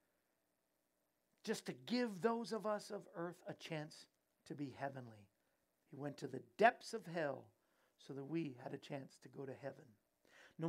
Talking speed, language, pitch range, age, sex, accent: 175 wpm, English, 145-210 Hz, 50-69, male, American